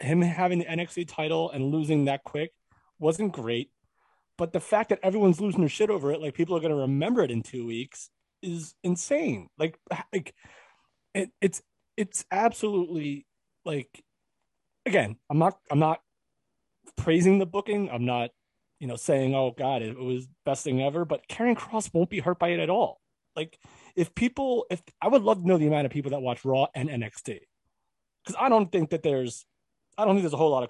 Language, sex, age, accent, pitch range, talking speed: English, male, 30-49, American, 130-185 Hz, 200 wpm